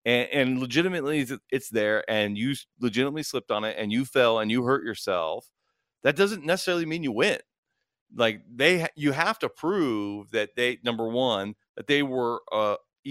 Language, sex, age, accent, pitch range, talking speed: English, male, 40-59, American, 105-140 Hz, 175 wpm